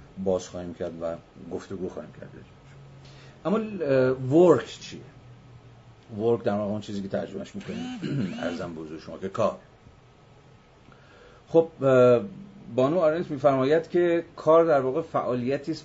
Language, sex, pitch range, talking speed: Persian, male, 105-135 Hz, 125 wpm